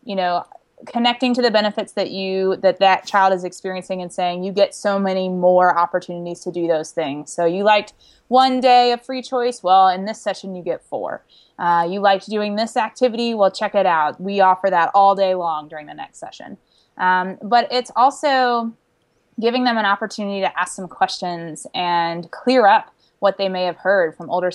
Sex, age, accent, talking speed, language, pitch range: female, 20-39, American, 200 wpm, English, 180-215 Hz